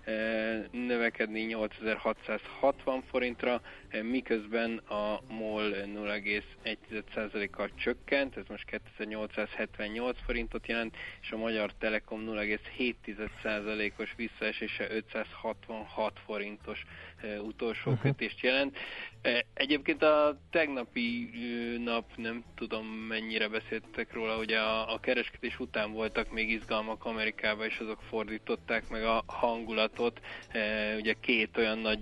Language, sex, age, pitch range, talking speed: Hungarian, male, 20-39, 105-115 Hz, 100 wpm